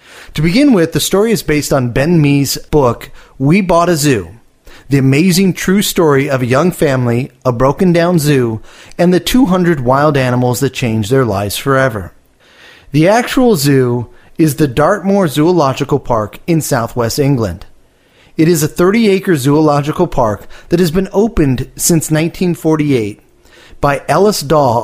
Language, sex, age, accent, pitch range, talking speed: English, male, 30-49, American, 130-170 Hz, 150 wpm